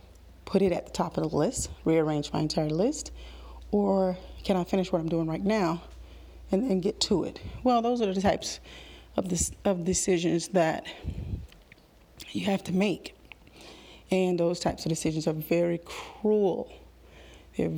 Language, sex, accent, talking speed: English, female, American, 160 wpm